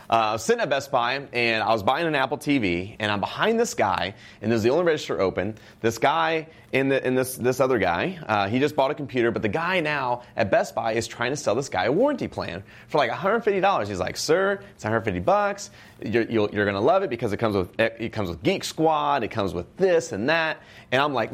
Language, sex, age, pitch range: English, male, 30-49, 105-140 Hz